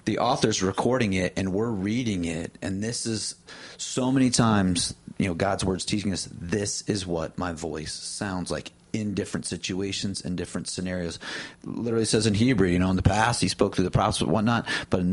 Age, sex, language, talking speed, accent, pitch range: 30-49, male, English, 205 wpm, American, 90-115 Hz